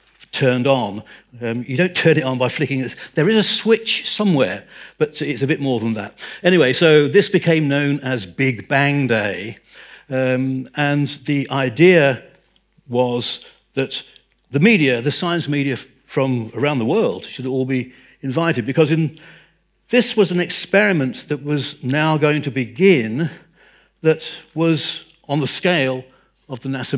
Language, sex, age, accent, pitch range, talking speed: English, male, 60-79, British, 135-165 Hz, 160 wpm